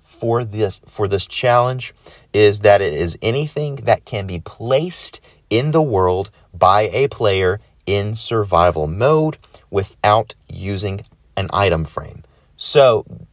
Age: 30-49